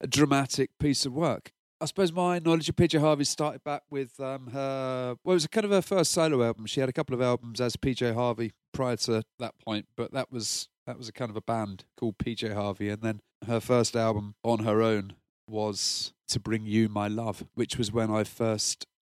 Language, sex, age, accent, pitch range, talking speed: English, male, 40-59, British, 110-135 Hz, 225 wpm